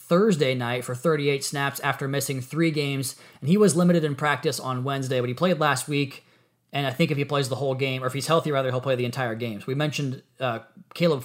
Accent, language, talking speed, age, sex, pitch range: American, English, 245 wpm, 20-39, male, 135-155 Hz